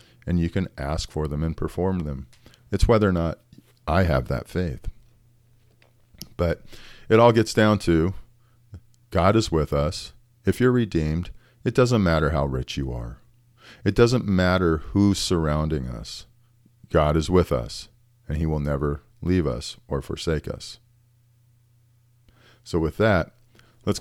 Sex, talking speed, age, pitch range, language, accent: male, 150 wpm, 40-59, 80-115 Hz, English, American